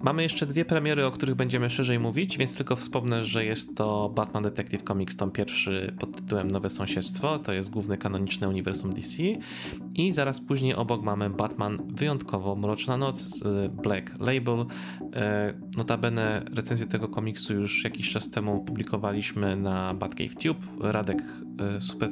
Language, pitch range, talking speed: Polish, 100-130 Hz, 150 wpm